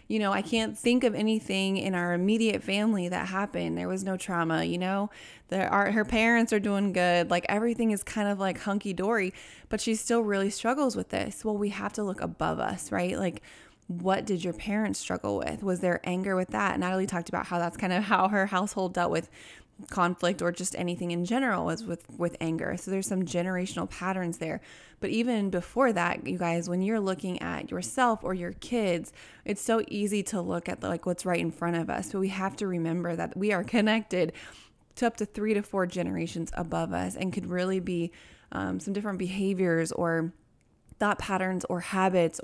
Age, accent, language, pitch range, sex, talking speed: 20-39, American, English, 175-210 Hz, female, 205 wpm